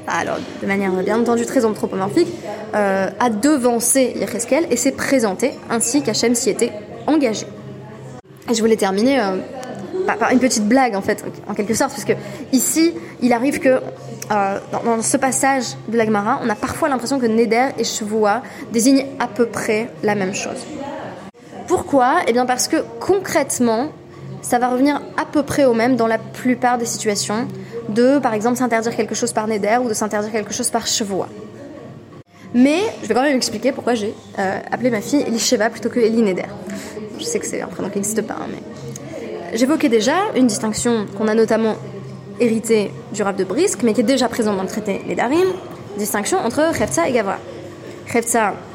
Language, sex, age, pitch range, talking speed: French, female, 20-39, 215-260 Hz, 180 wpm